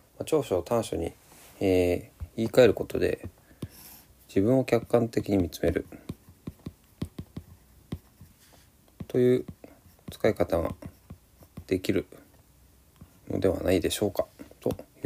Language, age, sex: Japanese, 40-59, male